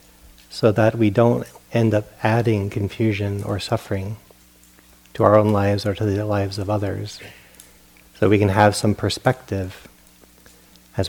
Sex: male